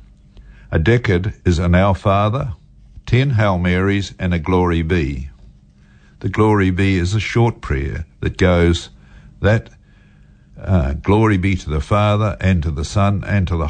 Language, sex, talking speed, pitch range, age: English, male, 160 wpm, 85-100 Hz, 50-69